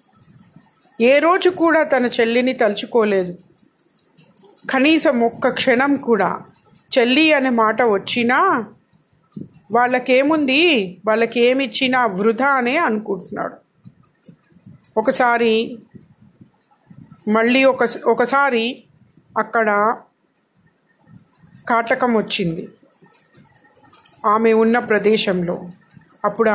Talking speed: 65 wpm